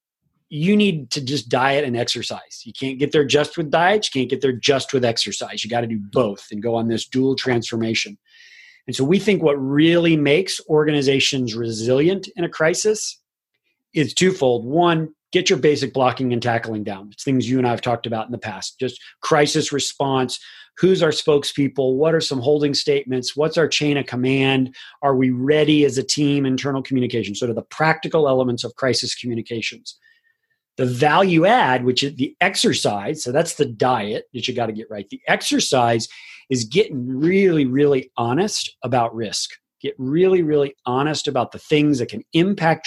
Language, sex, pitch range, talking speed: English, male, 120-155 Hz, 185 wpm